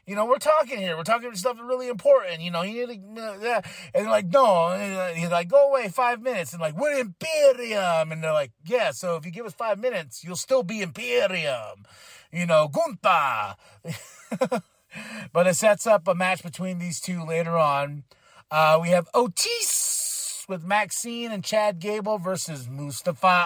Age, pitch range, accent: 30-49, 170-250 Hz, American